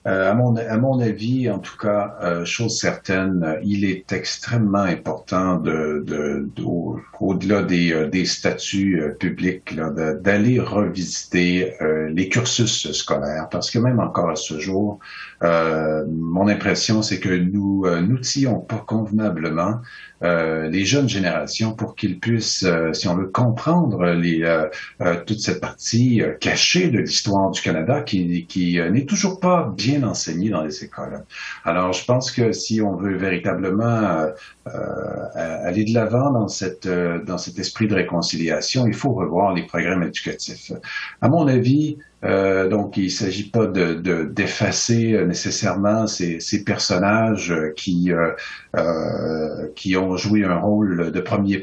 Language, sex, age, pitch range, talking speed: French, male, 50-69, 85-110 Hz, 160 wpm